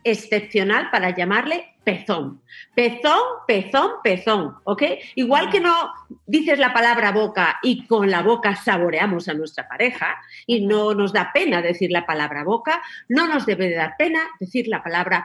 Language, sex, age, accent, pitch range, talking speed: Spanish, female, 50-69, Spanish, 210-305 Hz, 160 wpm